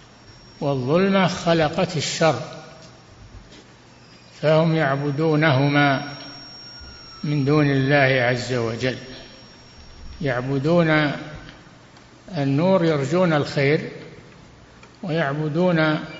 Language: Arabic